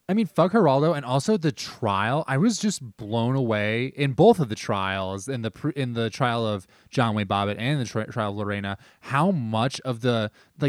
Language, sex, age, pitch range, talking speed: English, male, 20-39, 115-155 Hz, 200 wpm